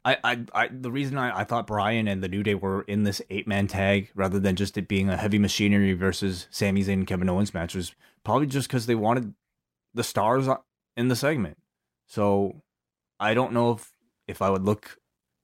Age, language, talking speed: 20-39, English, 210 wpm